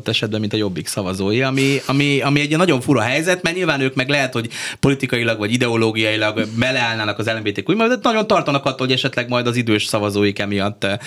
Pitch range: 105-135 Hz